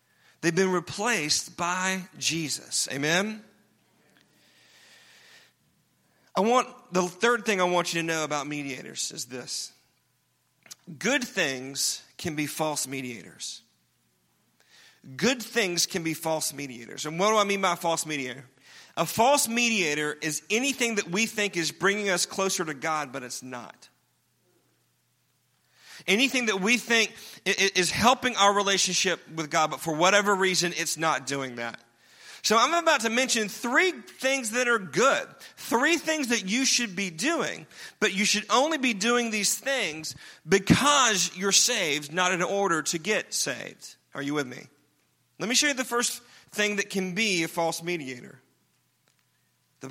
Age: 40-59